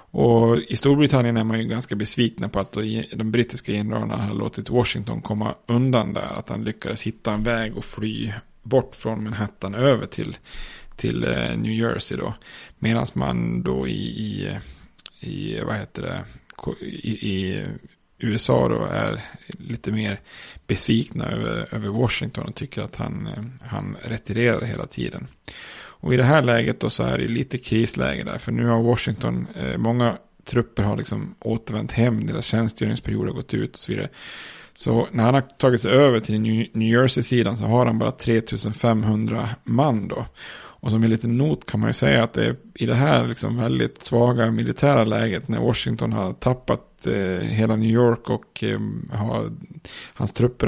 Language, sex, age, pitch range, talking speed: Swedish, male, 30-49, 110-120 Hz, 165 wpm